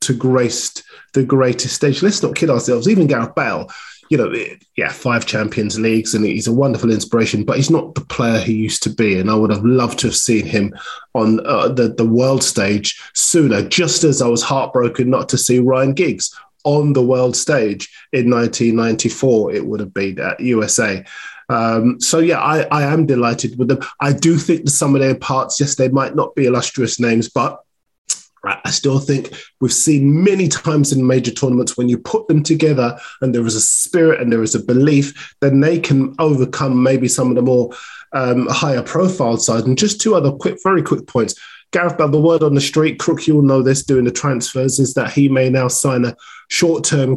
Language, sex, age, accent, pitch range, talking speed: English, male, 20-39, British, 120-145 Hz, 205 wpm